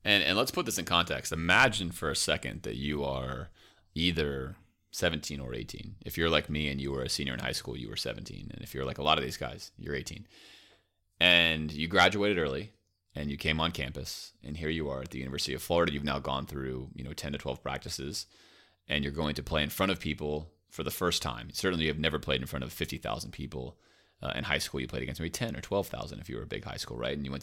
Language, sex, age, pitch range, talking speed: English, male, 30-49, 75-95 Hz, 255 wpm